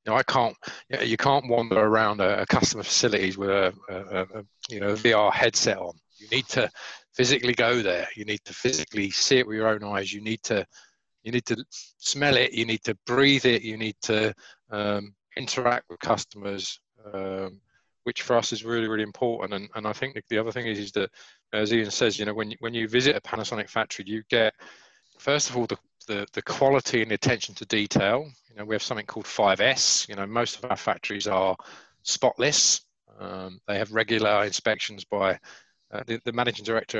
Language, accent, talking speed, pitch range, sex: English, British, 210 wpm, 105-120 Hz, male